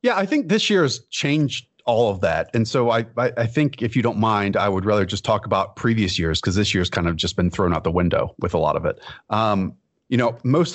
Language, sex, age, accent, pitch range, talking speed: English, male, 30-49, American, 95-115 Hz, 270 wpm